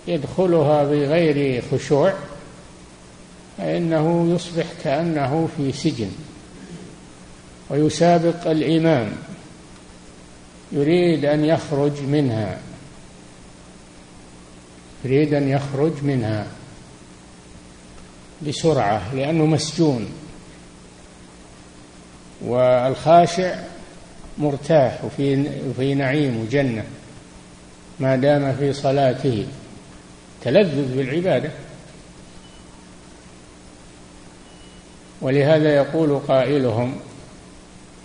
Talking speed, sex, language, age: 55 wpm, male, Arabic, 50-69